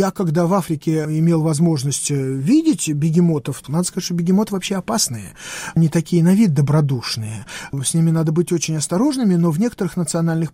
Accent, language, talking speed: native, Russian, 165 wpm